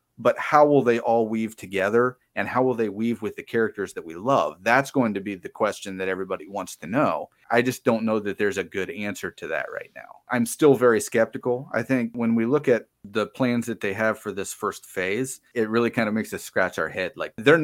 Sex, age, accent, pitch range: male, 30-49, American, 105-130 Hz